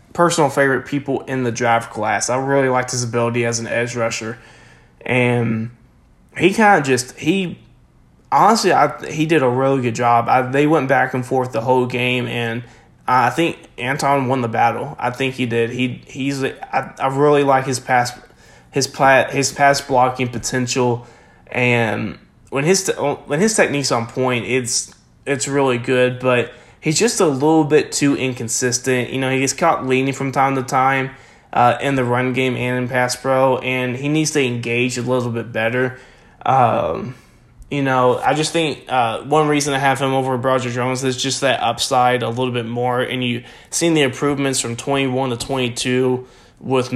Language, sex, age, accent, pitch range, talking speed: English, male, 20-39, American, 120-135 Hz, 185 wpm